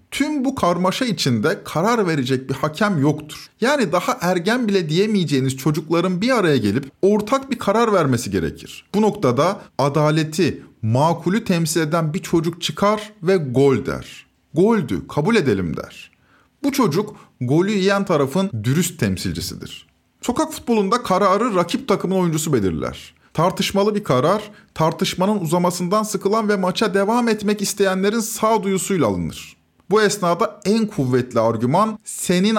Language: Turkish